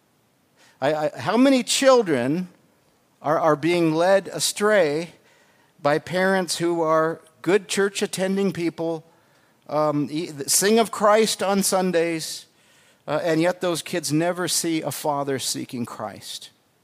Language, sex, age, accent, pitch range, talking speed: English, male, 50-69, American, 145-225 Hz, 120 wpm